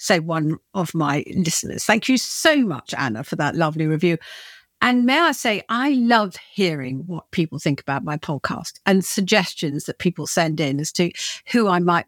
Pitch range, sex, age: 170-245 Hz, female, 50-69